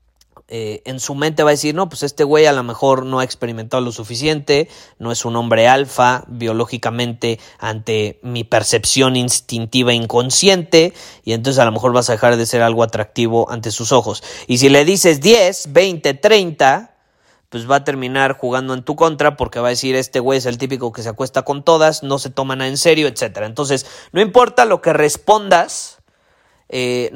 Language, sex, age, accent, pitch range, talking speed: Spanish, male, 30-49, Mexican, 120-150 Hz, 190 wpm